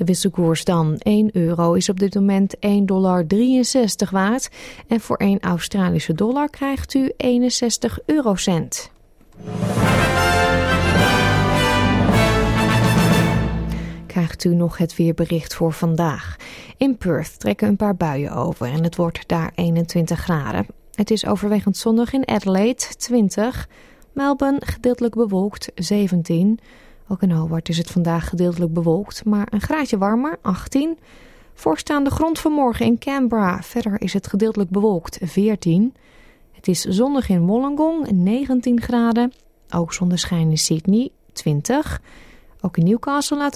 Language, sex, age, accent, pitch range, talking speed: Dutch, female, 30-49, Dutch, 170-245 Hz, 125 wpm